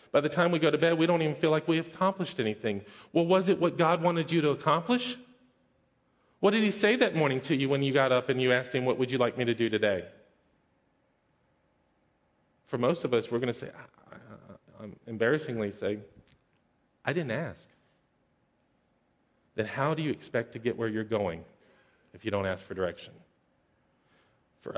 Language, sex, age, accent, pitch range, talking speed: English, male, 40-59, American, 100-150 Hz, 200 wpm